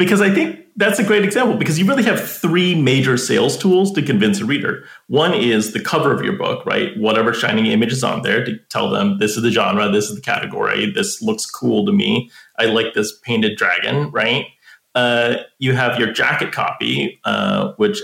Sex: male